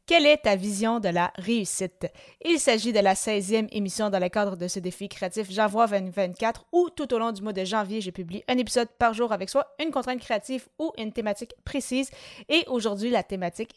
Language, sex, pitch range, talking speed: French, female, 190-235 Hz, 220 wpm